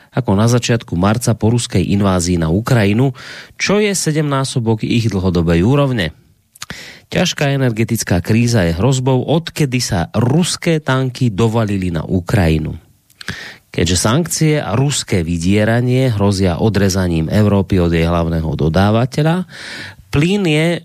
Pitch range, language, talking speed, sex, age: 95-130 Hz, Slovak, 120 wpm, male, 30-49